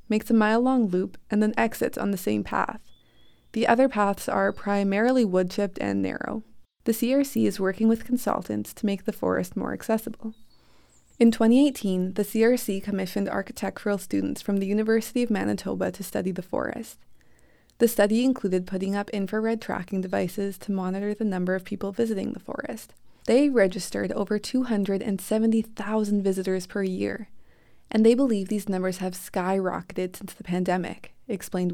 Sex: female